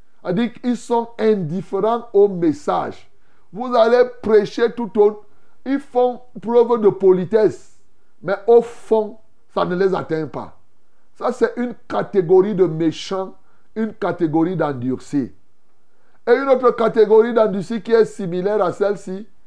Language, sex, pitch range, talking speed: French, male, 190-245 Hz, 135 wpm